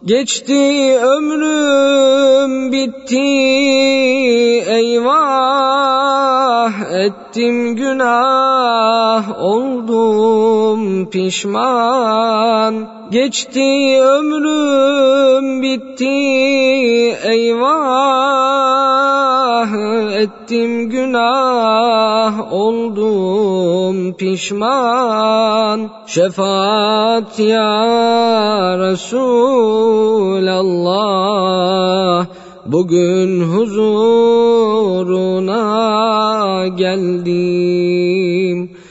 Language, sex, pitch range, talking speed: Turkish, male, 190-265 Hz, 35 wpm